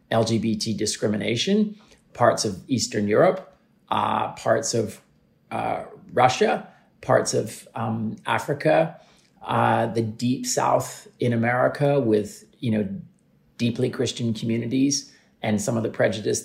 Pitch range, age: 110-140 Hz, 40-59